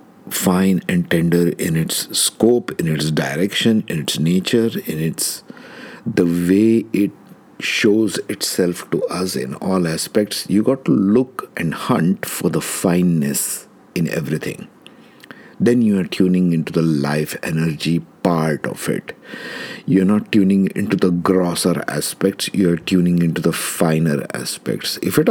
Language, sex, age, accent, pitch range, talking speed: English, male, 60-79, Indian, 80-100 Hz, 145 wpm